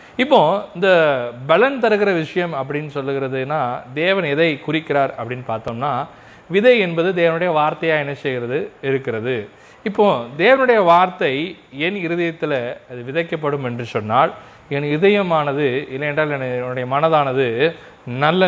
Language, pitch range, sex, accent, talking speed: Tamil, 130-175 Hz, male, native, 110 wpm